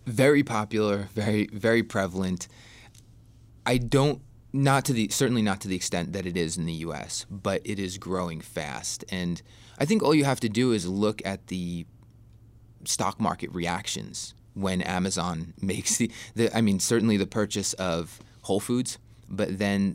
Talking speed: 170 wpm